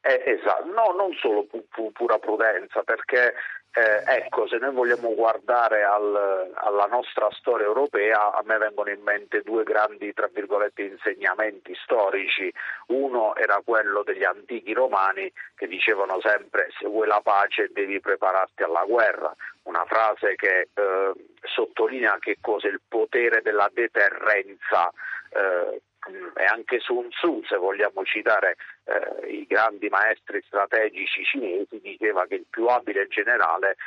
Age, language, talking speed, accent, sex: 50-69, Italian, 140 wpm, native, male